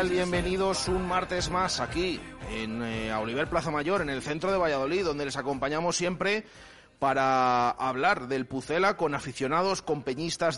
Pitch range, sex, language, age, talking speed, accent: 140-180 Hz, male, Spanish, 30-49, 160 wpm, Spanish